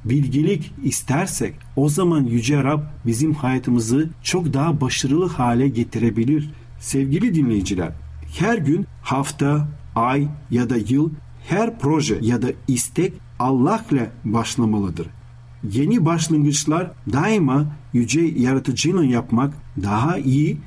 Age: 50-69